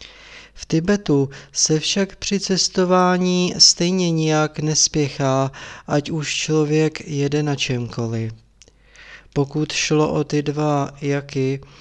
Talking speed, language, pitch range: 105 wpm, Czech, 135-160 Hz